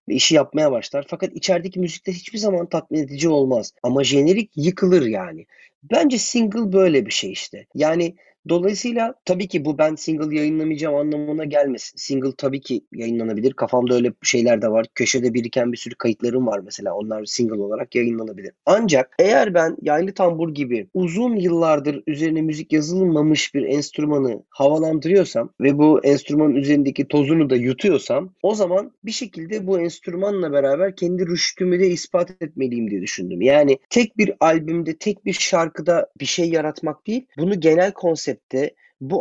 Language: Turkish